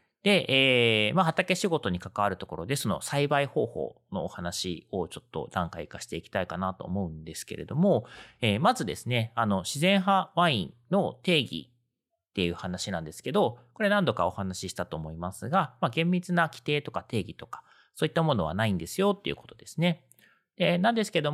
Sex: male